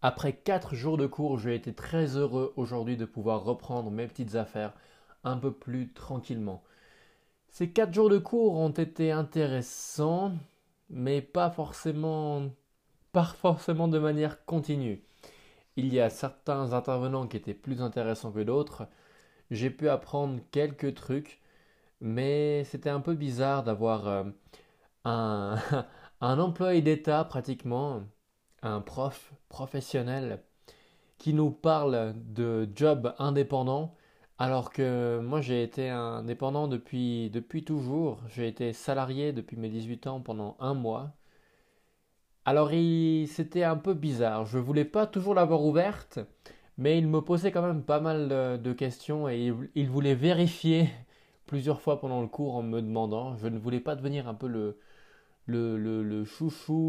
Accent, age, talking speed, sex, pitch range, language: French, 20-39, 140 wpm, male, 120-155 Hz, French